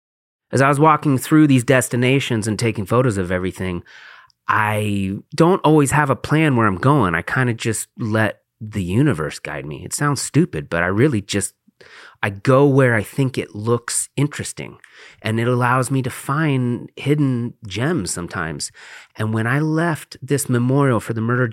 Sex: male